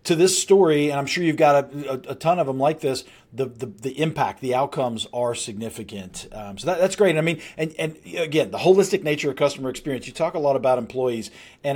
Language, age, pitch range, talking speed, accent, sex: English, 40-59, 130-155 Hz, 240 wpm, American, male